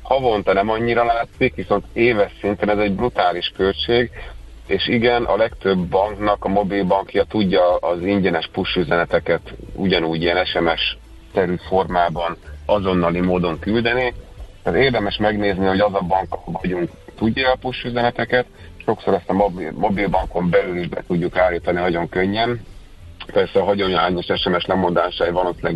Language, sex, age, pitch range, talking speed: Hungarian, male, 30-49, 90-105 Hz, 135 wpm